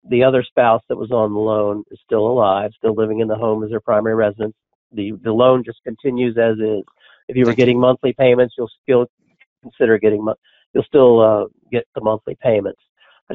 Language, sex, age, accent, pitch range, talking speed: English, male, 50-69, American, 110-125 Hz, 200 wpm